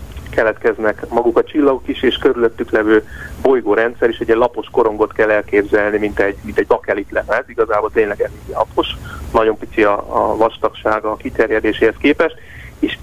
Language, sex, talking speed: Hungarian, male, 160 wpm